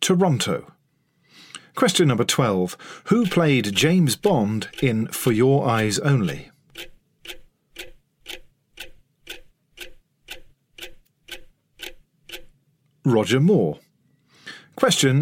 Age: 50-69